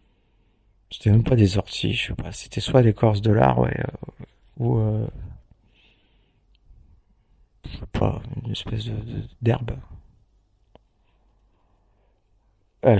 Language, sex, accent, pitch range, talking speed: French, male, French, 100-115 Hz, 125 wpm